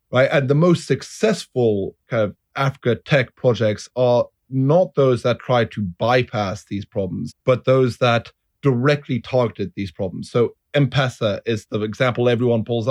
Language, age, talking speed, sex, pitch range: English, 30-49, 160 wpm, male, 105-125 Hz